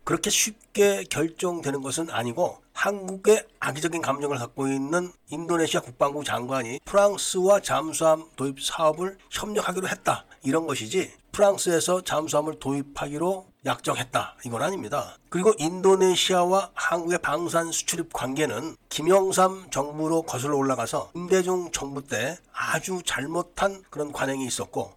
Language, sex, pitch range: Korean, male, 145-185 Hz